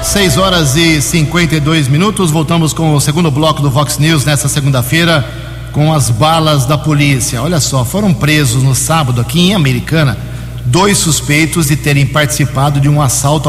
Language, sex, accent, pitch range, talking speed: Portuguese, male, Brazilian, 135-160 Hz, 165 wpm